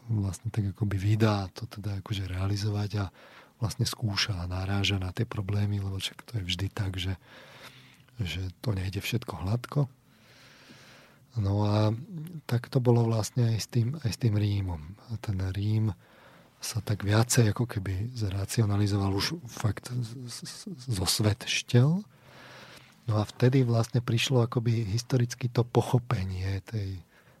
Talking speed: 145 wpm